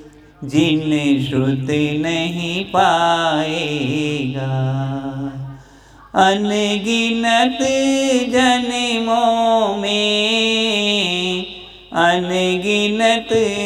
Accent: native